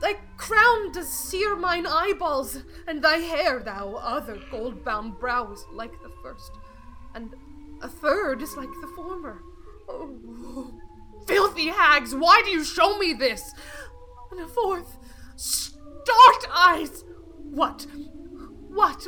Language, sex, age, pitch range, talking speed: English, female, 20-39, 245-355 Hz, 125 wpm